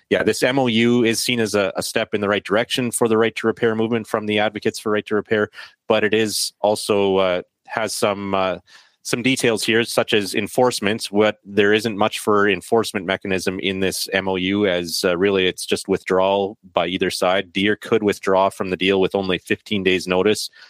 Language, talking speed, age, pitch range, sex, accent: English, 190 wpm, 30-49, 95-105 Hz, male, American